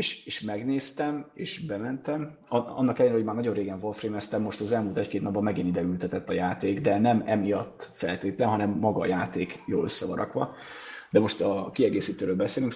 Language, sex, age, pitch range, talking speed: Hungarian, male, 30-49, 100-140 Hz, 175 wpm